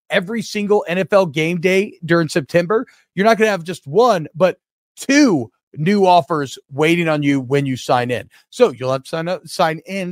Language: English